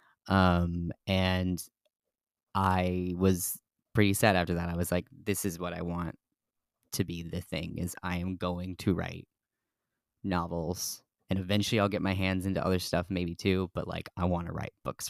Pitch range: 90-105 Hz